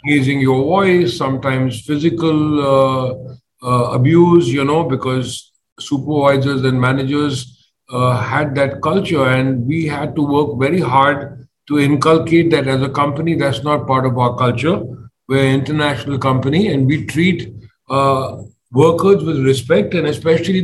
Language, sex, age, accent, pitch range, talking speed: English, male, 50-69, Indian, 130-160 Hz, 145 wpm